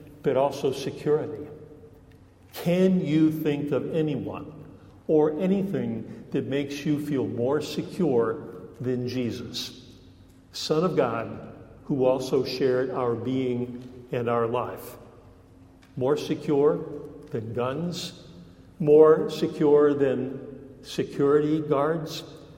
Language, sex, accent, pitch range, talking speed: English, male, American, 125-160 Hz, 100 wpm